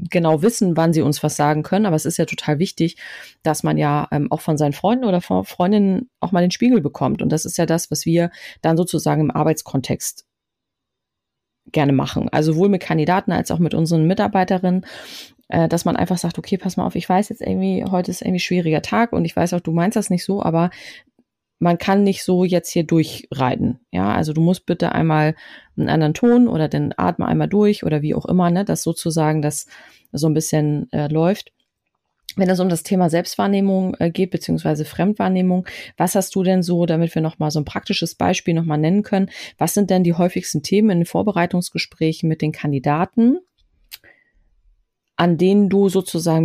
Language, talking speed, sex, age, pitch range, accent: German, 200 wpm, female, 30-49, 155-190 Hz, German